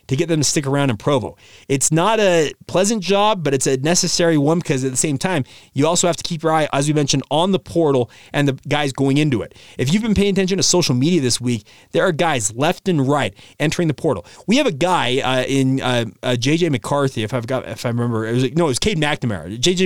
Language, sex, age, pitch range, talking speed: English, male, 30-49, 130-175 Hz, 255 wpm